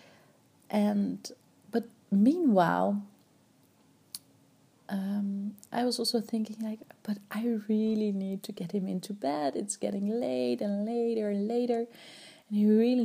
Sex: female